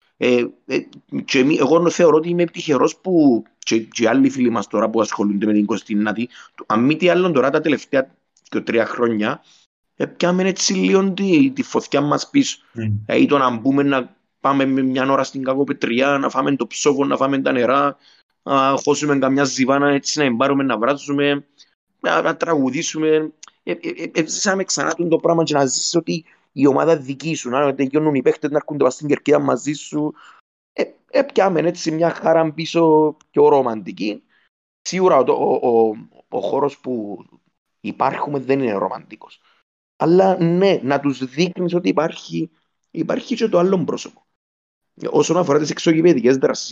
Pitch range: 125-165 Hz